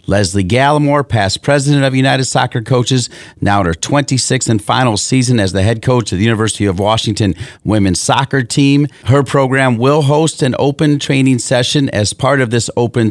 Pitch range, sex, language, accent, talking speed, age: 105-130 Hz, male, English, American, 185 wpm, 40-59